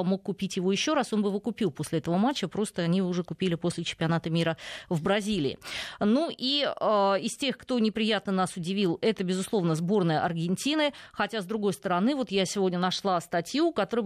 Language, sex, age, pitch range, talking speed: Russian, female, 20-39, 175-220 Hz, 190 wpm